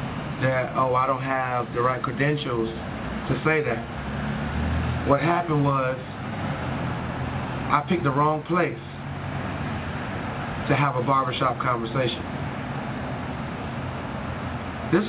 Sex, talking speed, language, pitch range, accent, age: male, 100 wpm, English, 130-160 Hz, American, 30-49